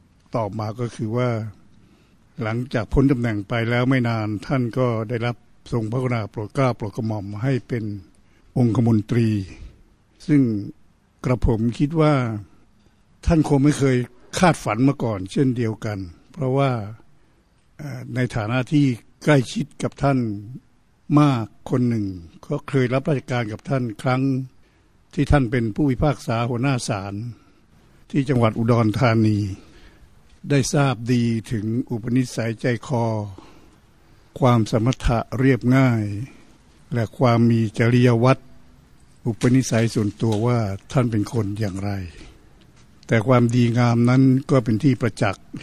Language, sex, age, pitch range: Thai, male, 60-79, 110-130 Hz